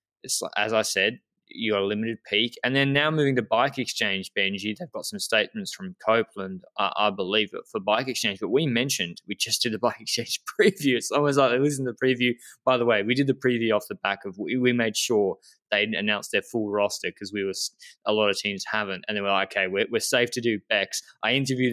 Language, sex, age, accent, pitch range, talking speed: English, male, 20-39, Australian, 105-125 Hz, 250 wpm